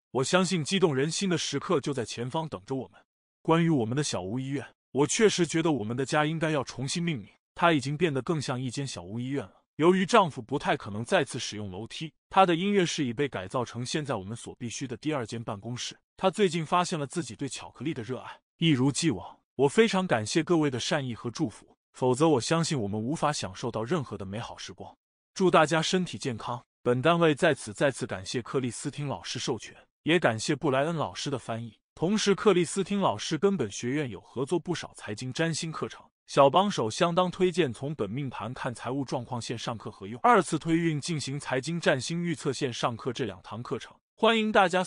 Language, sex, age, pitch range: Chinese, male, 20-39, 125-170 Hz